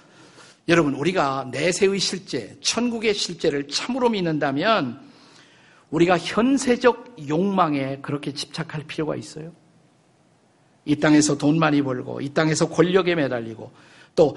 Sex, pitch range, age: male, 150-200 Hz, 50-69